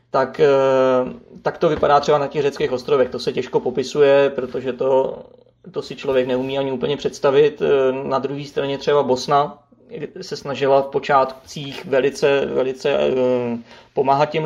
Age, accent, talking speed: 30-49, native, 145 wpm